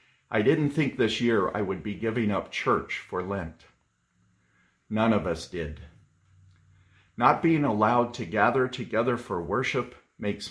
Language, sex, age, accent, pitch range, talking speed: English, male, 50-69, American, 90-125 Hz, 150 wpm